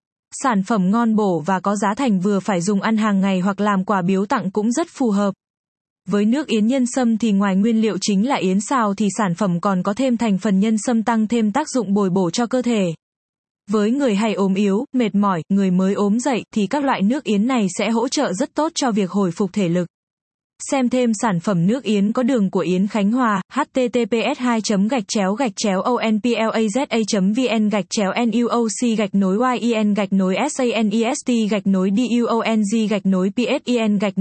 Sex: female